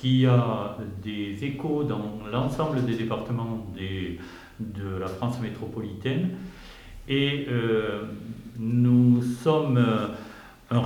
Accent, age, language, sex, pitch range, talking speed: French, 60-79, French, male, 115-145 Hz, 95 wpm